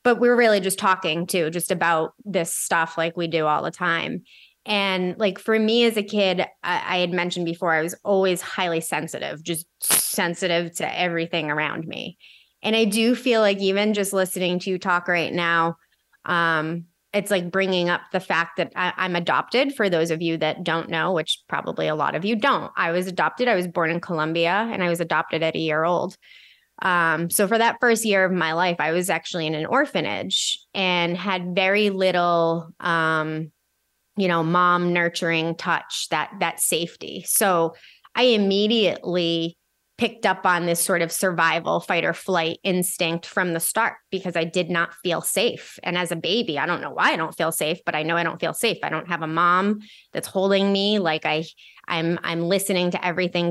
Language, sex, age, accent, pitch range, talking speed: English, female, 20-39, American, 165-195 Hz, 200 wpm